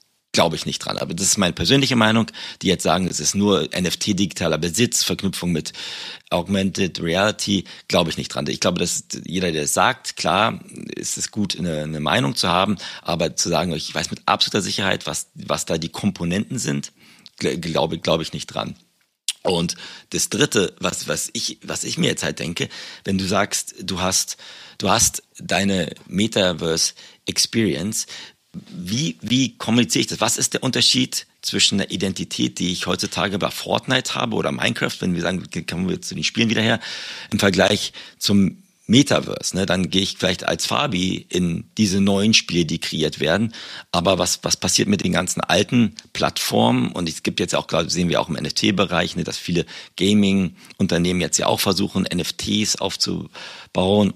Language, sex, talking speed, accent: German, male, 175 wpm, German